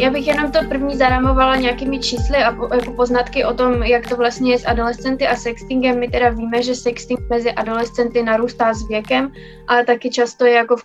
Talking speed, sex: 210 wpm, female